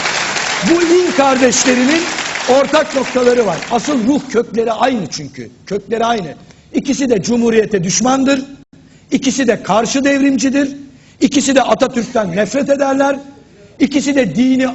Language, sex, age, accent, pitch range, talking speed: Turkish, male, 60-79, native, 225-275 Hz, 120 wpm